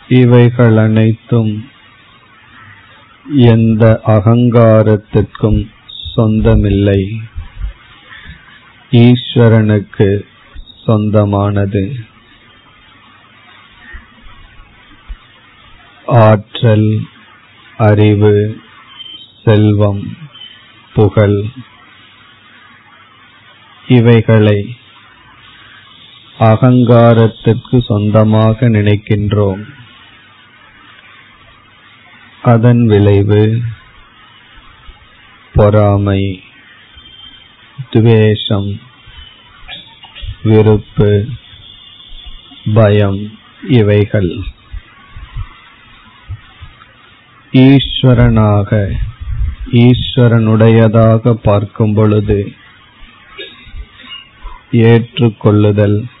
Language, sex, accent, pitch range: Tamil, male, native, 105-120 Hz